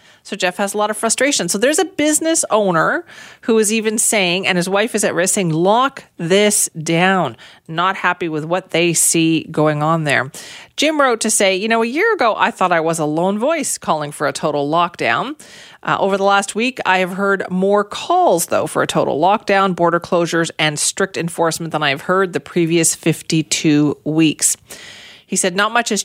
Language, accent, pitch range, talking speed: English, American, 165-210 Hz, 205 wpm